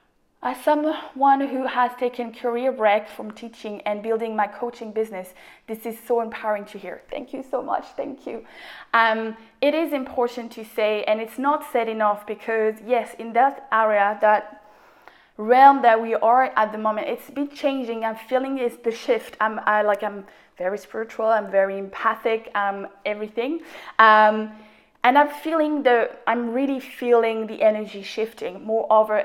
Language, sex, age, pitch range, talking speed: English, female, 20-39, 215-250 Hz, 165 wpm